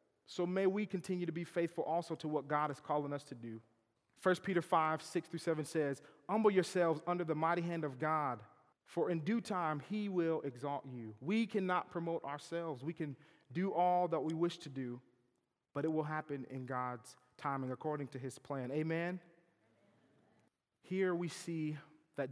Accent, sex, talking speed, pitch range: American, male, 185 wpm, 135-175 Hz